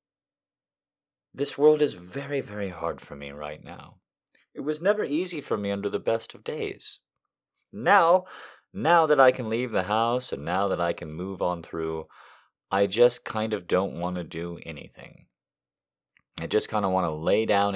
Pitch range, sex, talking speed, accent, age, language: 85-125 Hz, male, 185 wpm, American, 30-49, English